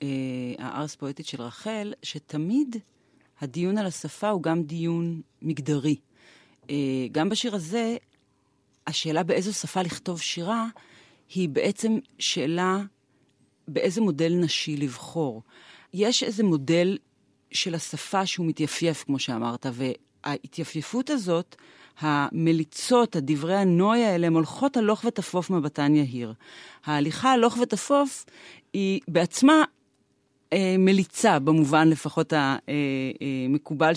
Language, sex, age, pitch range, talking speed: Hebrew, female, 40-59, 150-190 Hz, 100 wpm